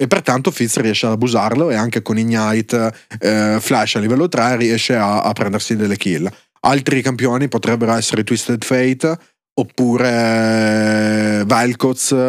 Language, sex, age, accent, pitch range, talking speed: Italian, male, 30-49, native, 110-130 Hz, 140 wpm